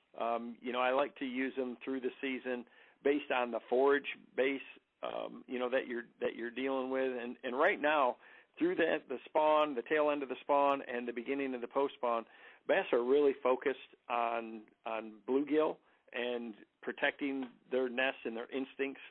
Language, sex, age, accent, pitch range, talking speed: English, male, 50-69, American, 125-140 Hz, 190 wpm